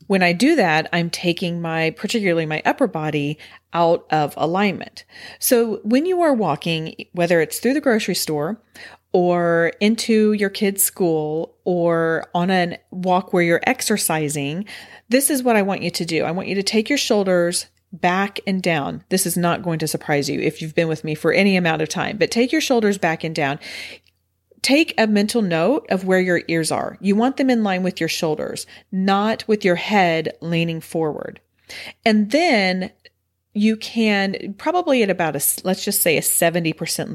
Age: 40-59